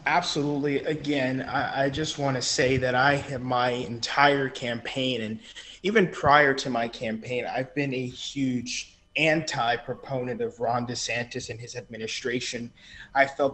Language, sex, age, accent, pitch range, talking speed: English, male, 20-39, American, 120-145 Hz, 145 wpm